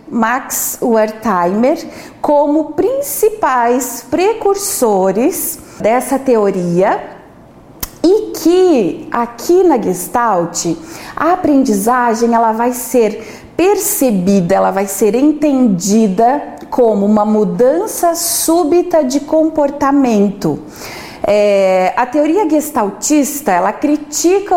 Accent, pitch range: Brazilian, 220-315 Hz